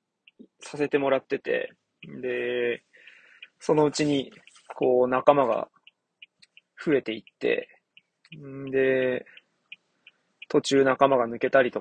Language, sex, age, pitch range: Japanese, male, 20-39, 125-165 Hz